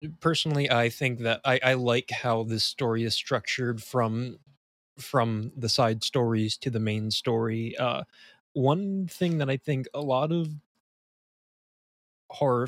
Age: 20-39